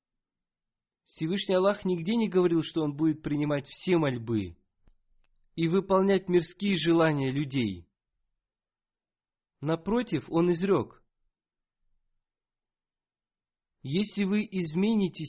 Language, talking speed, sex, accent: Russian, 85 wpm, male, native